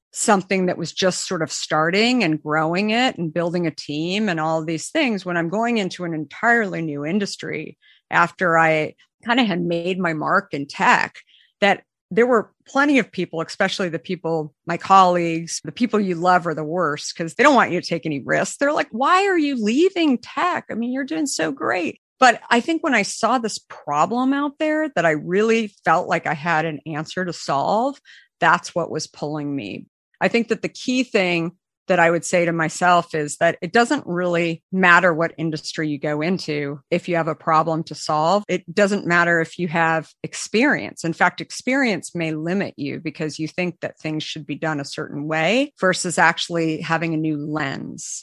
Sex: female